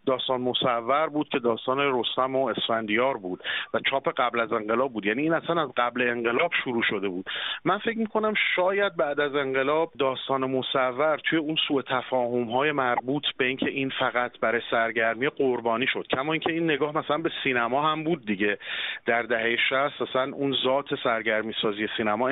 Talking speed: 180 wpm